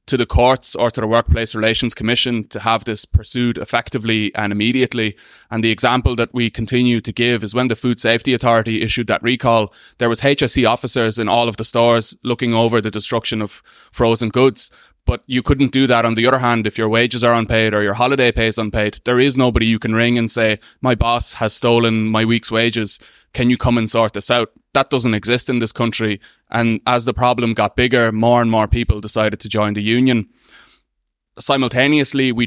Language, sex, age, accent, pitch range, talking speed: English, male, 20-39, Irish, 110-125 Hz, 210 wpm